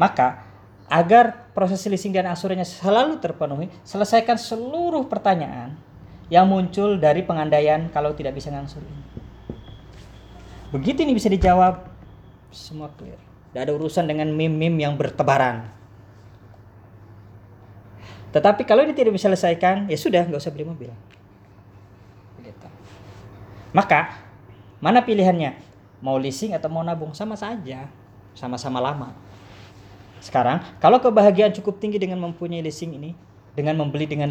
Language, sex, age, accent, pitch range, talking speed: Indonesian, female, 20-39, native, 105-165 Hz, 120 wpm